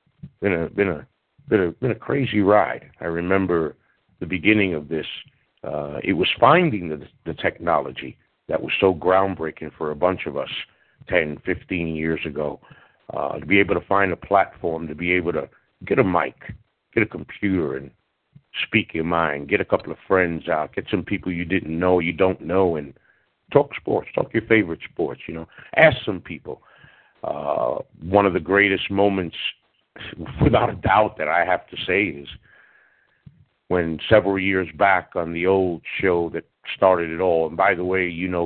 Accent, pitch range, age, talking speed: American, 80-100 Hz, 60-79, 185 wpm